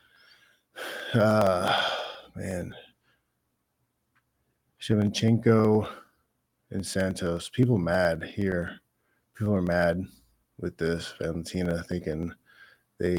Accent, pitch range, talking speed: American, 95-115 Hz, 75 wpm